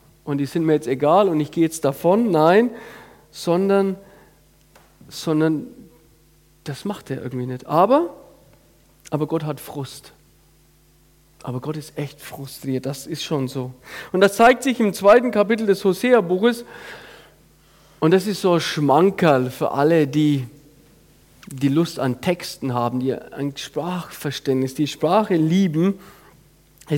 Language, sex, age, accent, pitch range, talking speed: German, male, 40-59, German, 150-195 Hz, 140 wpm